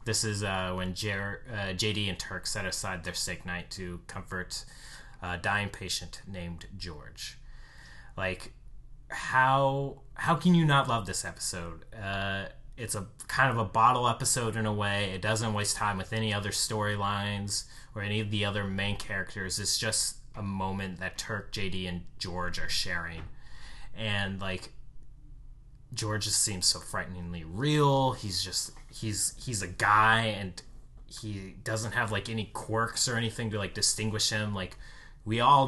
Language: English